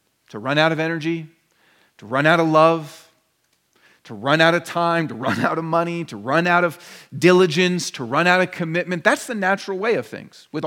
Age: 40-59